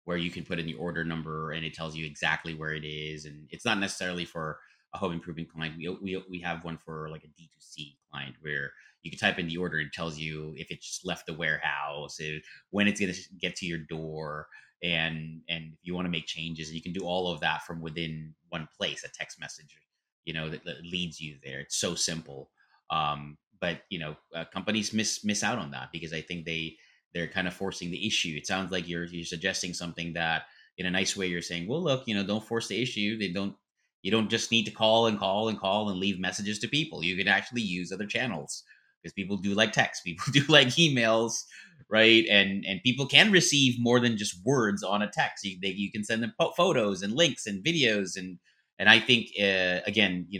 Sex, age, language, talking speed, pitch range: male, 30-49, English, 235 wpm, 80-105 Hz